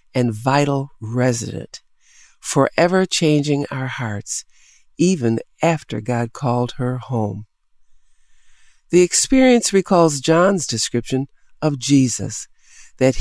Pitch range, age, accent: 120-165 Hz, 60-79, American